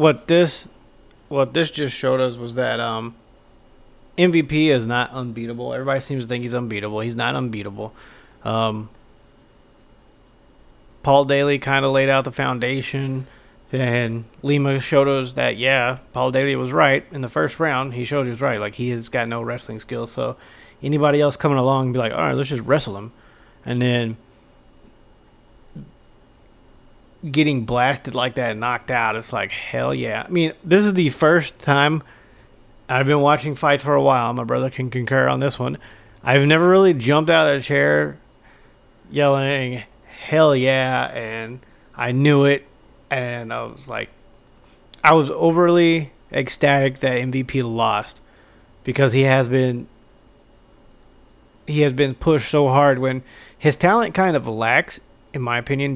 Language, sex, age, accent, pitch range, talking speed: English, male, 30-49, American, 120-145 Hz, 160 wpm